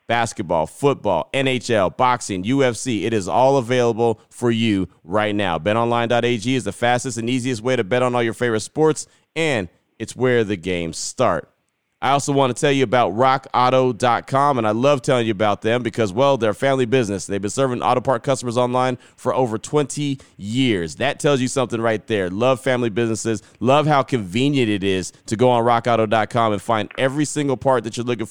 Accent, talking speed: American, 195 wpm